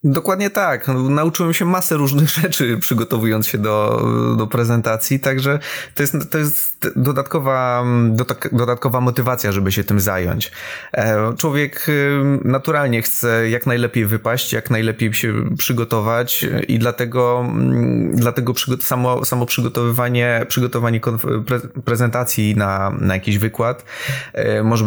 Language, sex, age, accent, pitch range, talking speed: Polish, male, 20-39, native, 110-140 Hz, 115 wpm